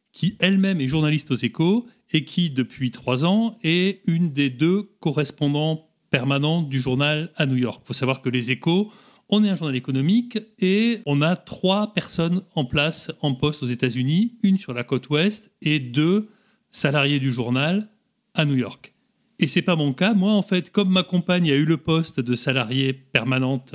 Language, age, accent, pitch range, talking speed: French, 30-49, French, 130-175 Hz, 190 wpm